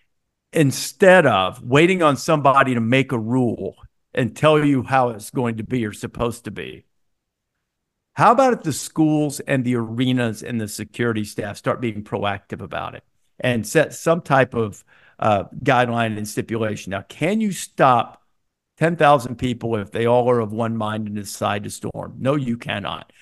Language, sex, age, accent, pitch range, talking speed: English, male, 50-69, American, 110-140 Hz, 175 wpm